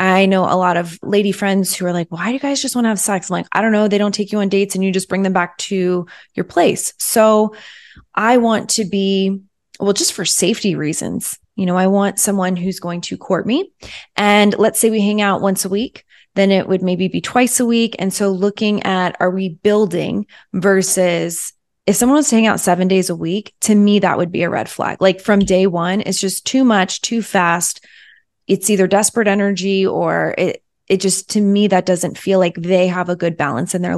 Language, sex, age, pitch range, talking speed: English, female, 20-39, 185-215 Hz, 235 wpm